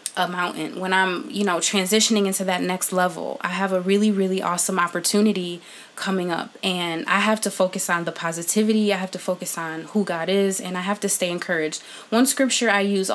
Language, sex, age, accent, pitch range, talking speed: English, female, 20-39, American, 180-210 Hz, 210 wpm